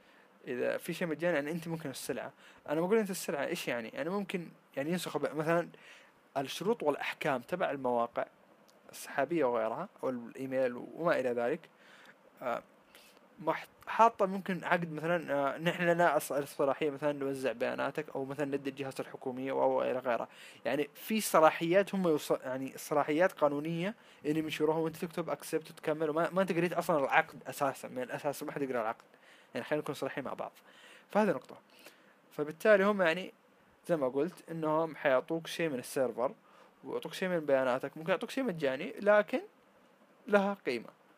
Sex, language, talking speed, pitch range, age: male, Arabic, 155 wpm, 145-175 Hz, 20-39